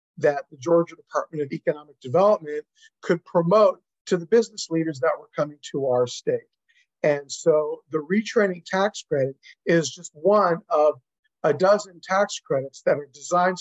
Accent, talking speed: American, 160 wpm